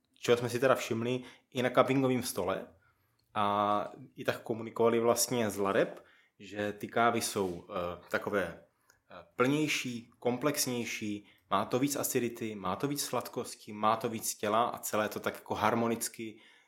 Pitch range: 105-125 Hz